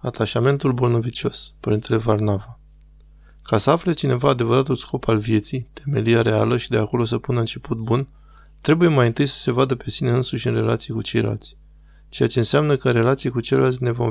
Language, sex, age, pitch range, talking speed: Romanian, male, 20-39, 110-130 Hz, 185 wpm